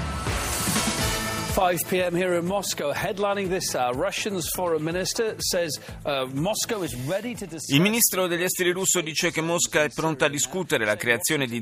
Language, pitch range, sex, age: Italian, 110-150 Hz, male, 30-49